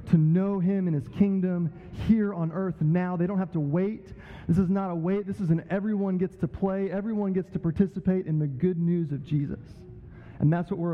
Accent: American